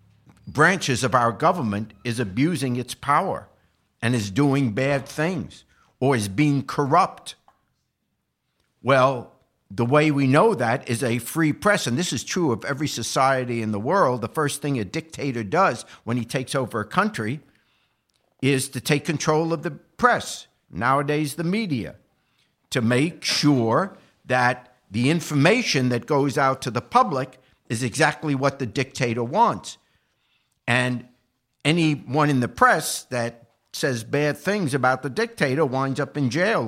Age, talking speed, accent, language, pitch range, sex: 60-79, 150 wpm, American, English, 120-155 Hz, male